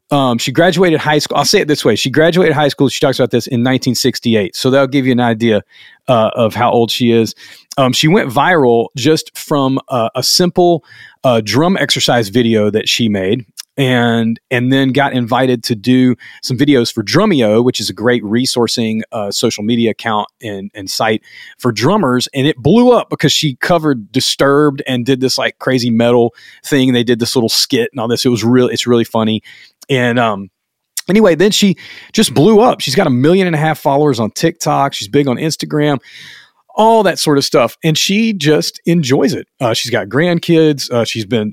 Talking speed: 205 wpm